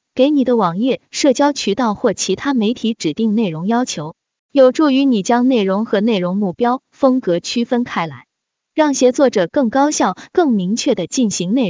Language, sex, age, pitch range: Chinese, female, 20-39, 200-275 Hz